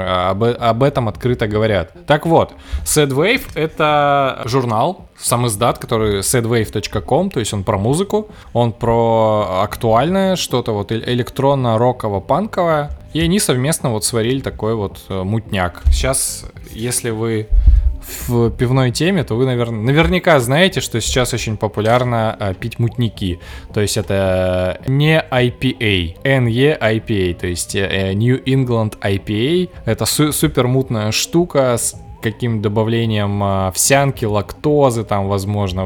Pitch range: 100-130 Hz